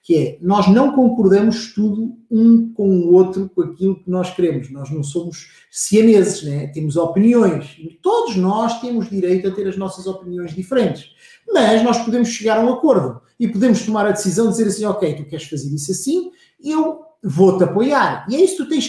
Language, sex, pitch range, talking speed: Portuguese, male, 175-225 Hz, 200 wpm